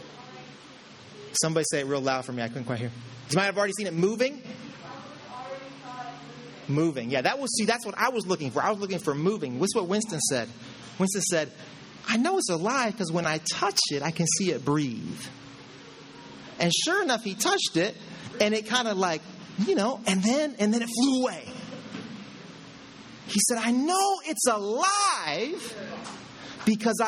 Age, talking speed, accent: 30-49, 180 wpm, American